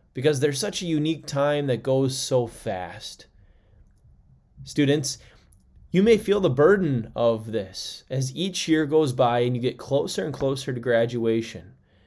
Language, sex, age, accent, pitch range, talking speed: English, male, 20-39, American, 110-155 Hz, 155 wpm